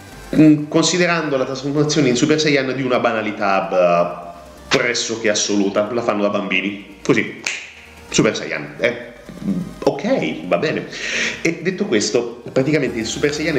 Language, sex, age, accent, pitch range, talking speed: Italian, male, 30-49, native, 100-125 Hz, 130 wpm